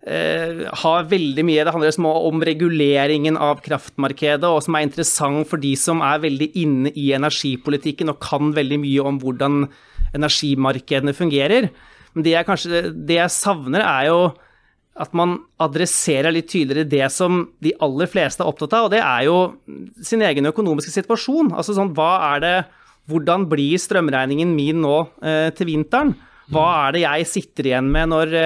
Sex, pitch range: male, 150-175 Hz